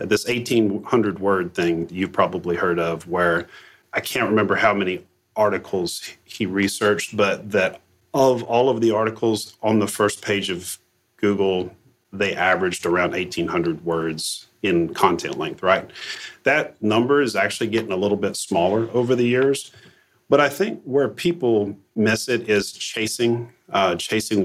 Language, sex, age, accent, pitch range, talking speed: English, male, 40-59, American, 100-120 Hz, 150 wpm